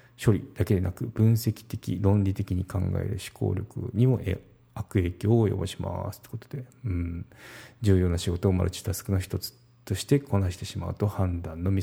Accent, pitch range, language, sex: native, 95-120 Hz, Japanese, male